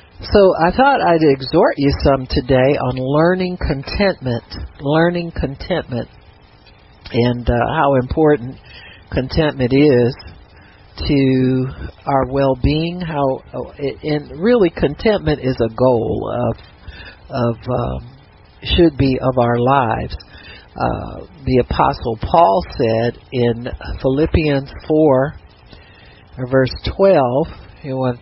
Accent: American